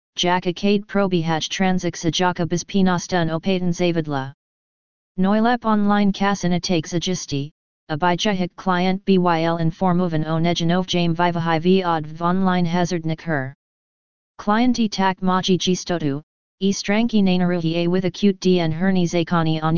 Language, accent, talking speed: Czech, American, 125 wpm